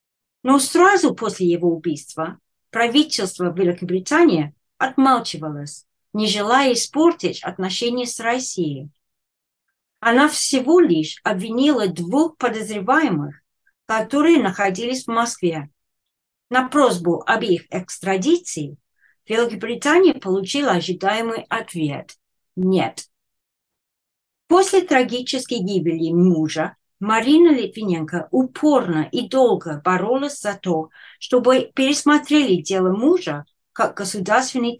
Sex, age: female, 40-59